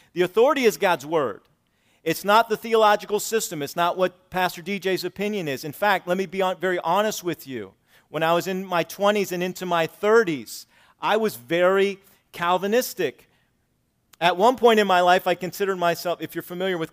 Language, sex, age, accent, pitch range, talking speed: English, male, 40-59, American, 130-180 Hz, 190 wpm